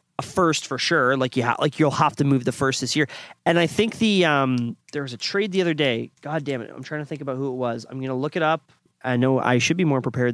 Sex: male